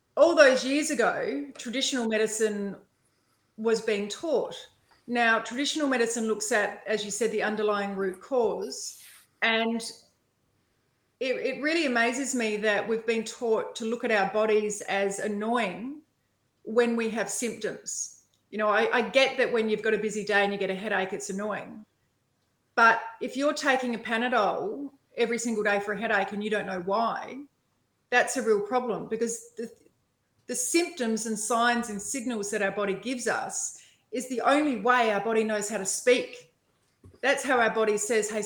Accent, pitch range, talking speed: Australian, 205-245 Hz, 175 wpm